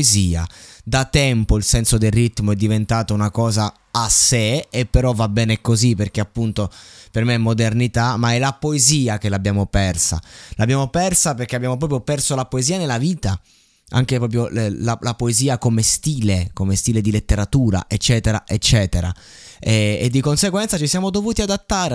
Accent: native